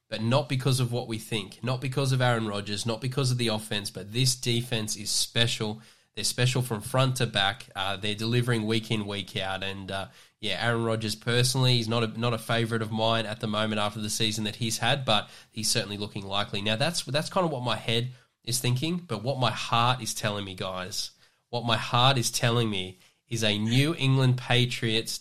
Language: English